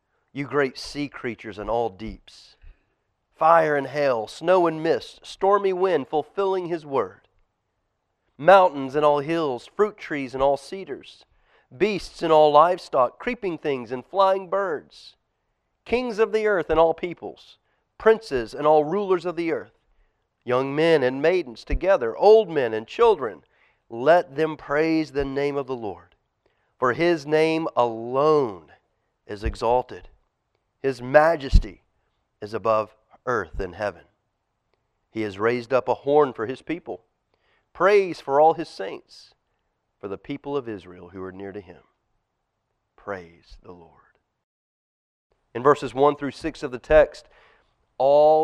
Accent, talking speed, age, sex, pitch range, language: American, 145 wpm, 40-59, male, 115-165 Hz, English